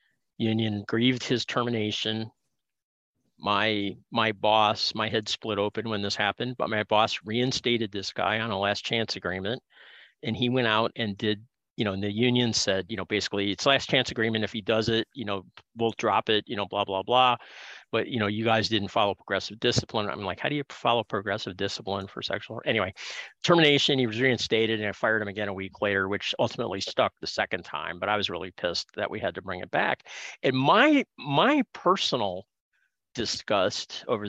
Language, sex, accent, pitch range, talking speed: English, male, American, 105-130 Hz, 200 wpm